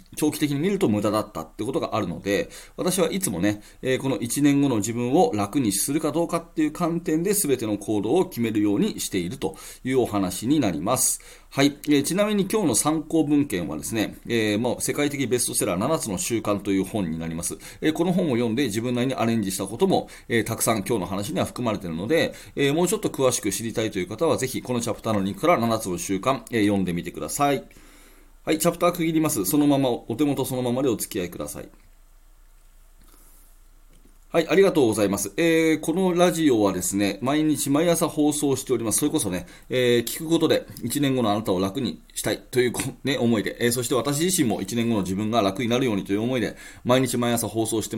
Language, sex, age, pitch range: Japanese, male, 30-49, 110-150 Hz